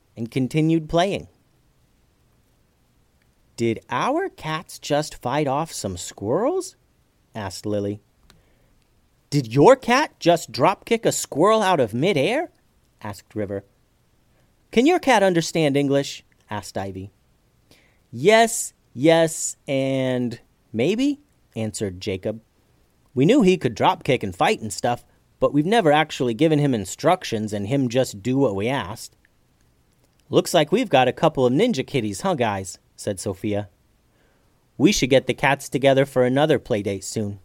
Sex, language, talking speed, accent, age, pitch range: male, English, 140 wpm, American, 40-59, 110-150 Hz